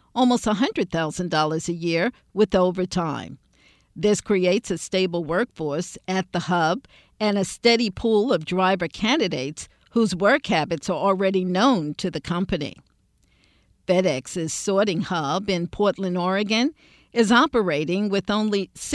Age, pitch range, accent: 50-69, 165-210 Hz, American